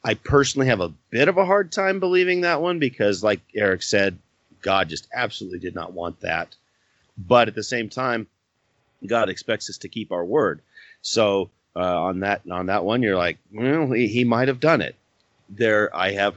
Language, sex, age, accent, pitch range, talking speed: English, male, 30-49, American, 90-130 Hz, 200 wpm